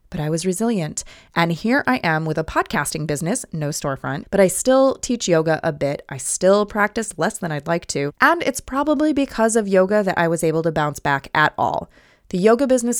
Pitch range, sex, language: 160-235 Hz, female, English